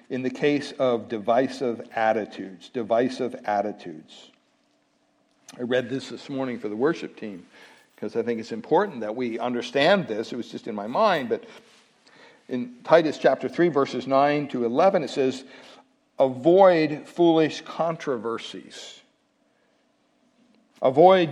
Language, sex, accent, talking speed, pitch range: English, male, American, 130 wpm, 130-215 Hz